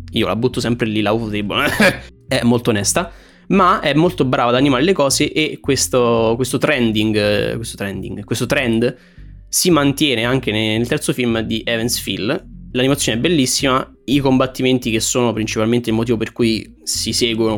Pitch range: 110-130 Hz